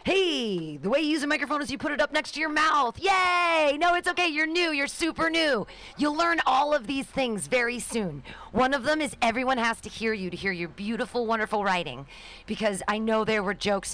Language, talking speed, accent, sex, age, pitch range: English, 230 wpm, American, female, 40-59, 190-310 Hz